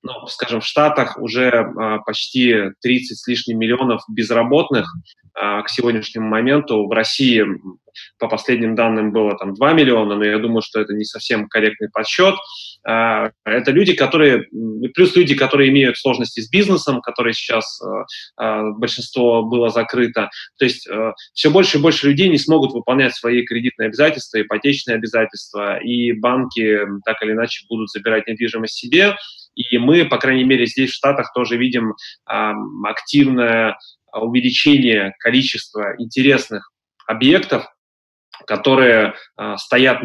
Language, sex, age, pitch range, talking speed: Russian, male, 20-39, 110-130 Hz, 140 wpm